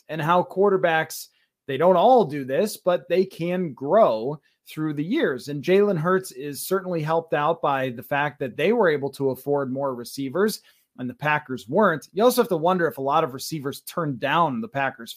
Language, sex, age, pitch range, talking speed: English, male, 30-49, 145-185 Hz, 200 wpm